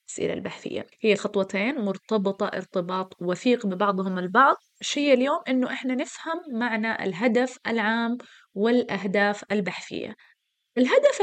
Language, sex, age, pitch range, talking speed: Arabic, female, 20-39, 200-260 Hz, 105 wpm